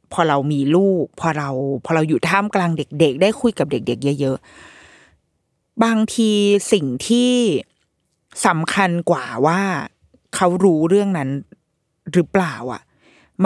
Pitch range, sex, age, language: 160-230 Hz, female, 20-39, Thai